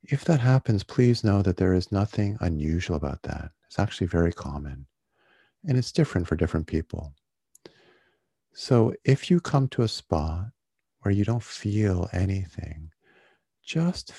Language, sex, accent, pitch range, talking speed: English, male, American, 80-105 Hz, 150 wpm